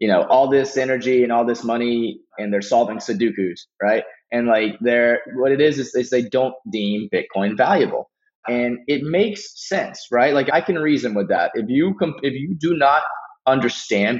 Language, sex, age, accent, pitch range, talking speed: English, male, 20-39, American, 115-145 Hz, 200 wpm